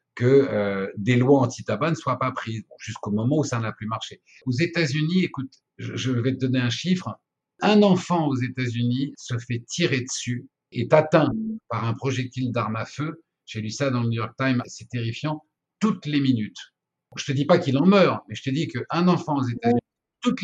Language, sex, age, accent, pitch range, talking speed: French, male, 50-69, French, 120-155 Hz, 210 wpm